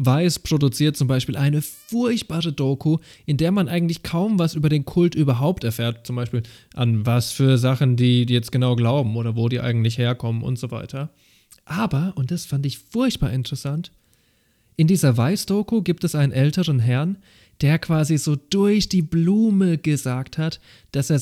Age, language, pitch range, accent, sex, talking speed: 20-39, German, 120-155 Hz, German, male, 175 wpm